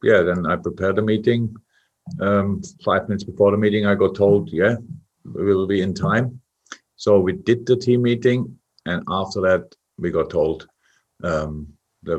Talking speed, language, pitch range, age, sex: 170 wpm, English, 90-115 Hz, 50-69, male